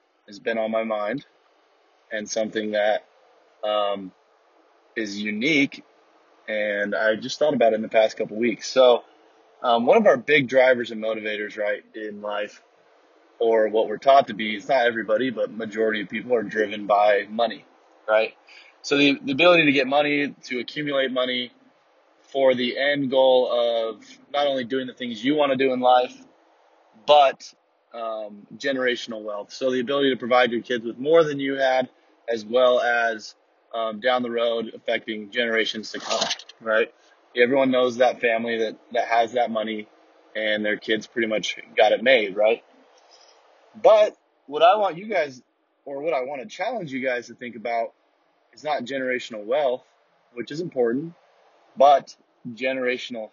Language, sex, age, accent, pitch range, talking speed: English, male, 20-39, American, 110-130 Hz, 170 wpm